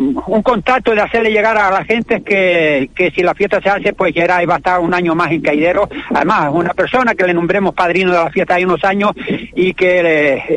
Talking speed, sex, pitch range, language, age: 240 wpm, male, 185-230 Hz, Spanish, 60-79